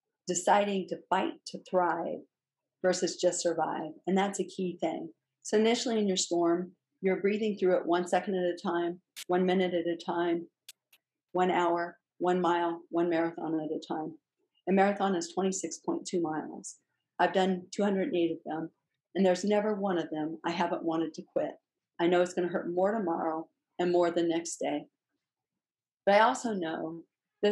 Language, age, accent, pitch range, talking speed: English, 40-59, American, 165-190 Hz, 175 wpm